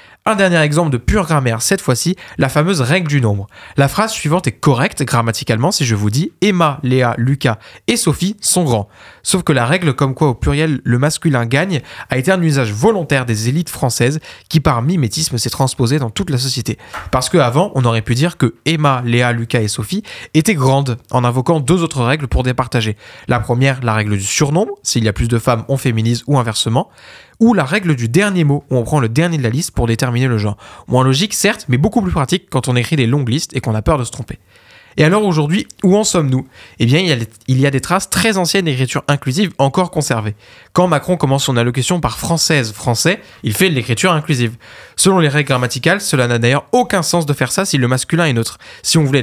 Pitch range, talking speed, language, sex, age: 120-165 Hz, 230 wpm, French, male, 20-39